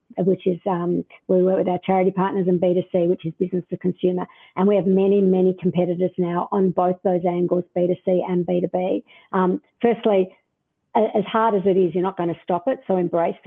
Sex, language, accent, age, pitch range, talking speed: female, English, Australian, 50-69, 185-210 Hz, 200 wpm